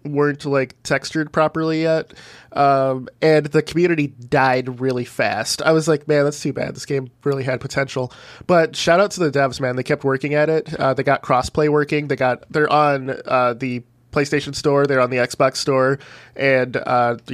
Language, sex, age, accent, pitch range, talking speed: English, male, 20-39, American, 125-145 Hz, 195 wpm